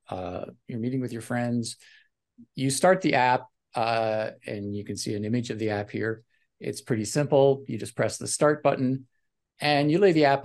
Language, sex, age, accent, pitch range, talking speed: English, male, 50-69, American, 115-145 Hz, 200 wpm